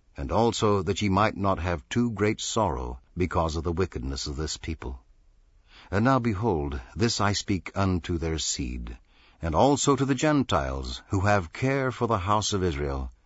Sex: male